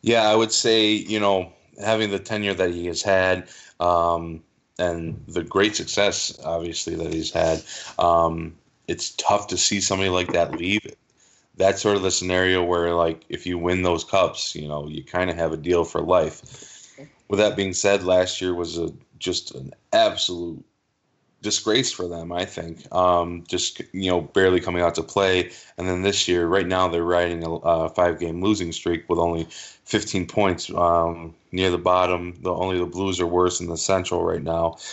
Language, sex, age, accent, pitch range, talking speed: English, male, 20-39, American, 85-95 Hz, 190 wpm